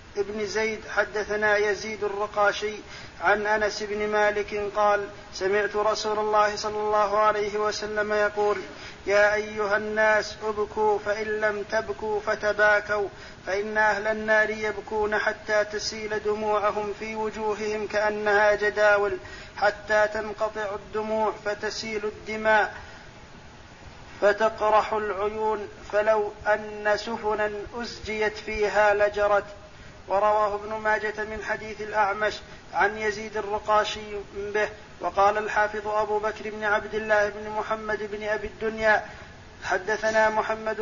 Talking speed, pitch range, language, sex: 110 wpm, 210-215 Hz, Arabic, male